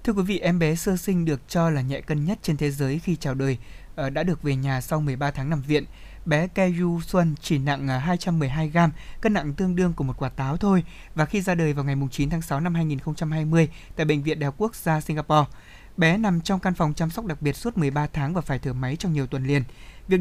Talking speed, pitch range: 250 wpm, 140-180 Hz